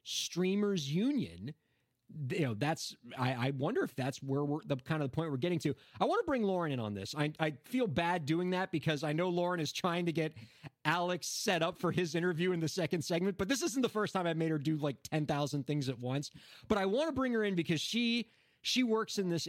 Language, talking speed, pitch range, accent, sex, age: English, 245 wpm, 140-185 Hz, American, male, 30-49